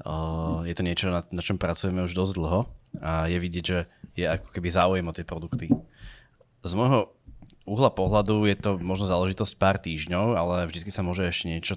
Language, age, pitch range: Slovak, 20-39, 85-100 Hz